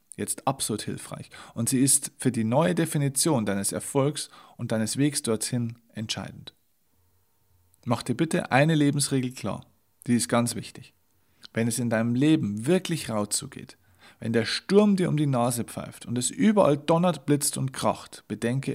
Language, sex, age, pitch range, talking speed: German, male, 40-59, 110-150 Hz, 165 wpm